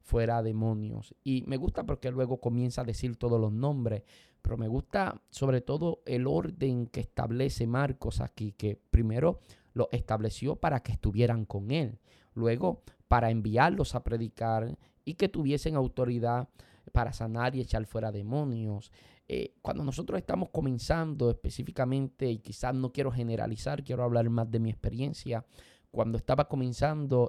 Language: Spanish